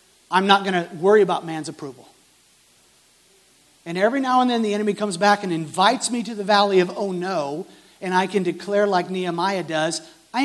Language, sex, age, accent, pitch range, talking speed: English, male, 50-69, American, 170-230 Hz, 195 wpm